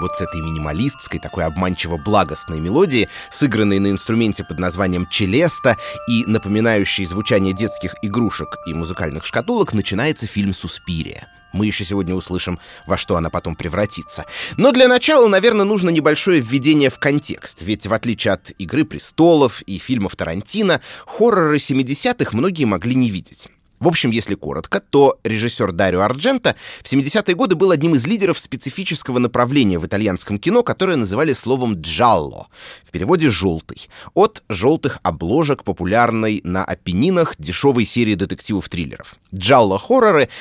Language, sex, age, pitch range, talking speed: Russian, male, 30-49, 95-155 Hz, 140 wpm